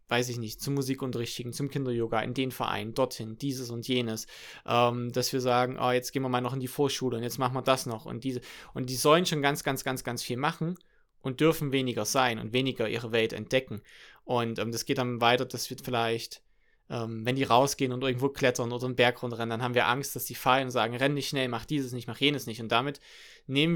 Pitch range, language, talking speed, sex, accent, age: 120-140 Hz, German, 235 wpm, male, German, 20-39